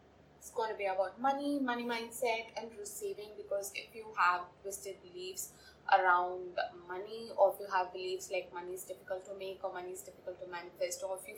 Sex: female